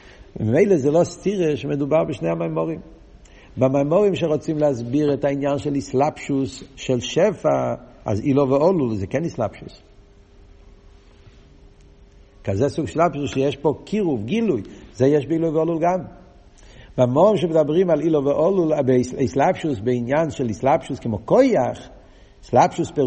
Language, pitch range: Hebrew, 100-135 Hz